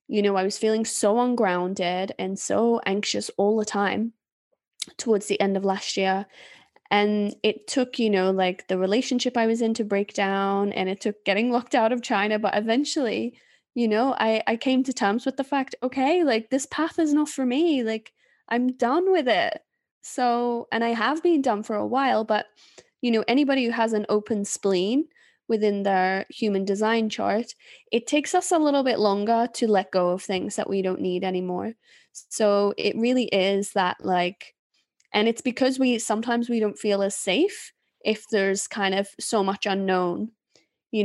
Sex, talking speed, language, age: female, 190 wpm, English, 10-29